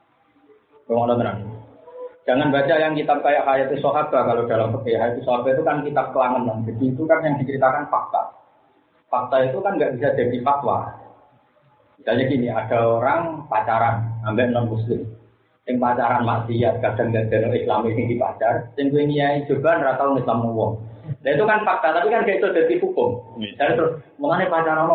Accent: native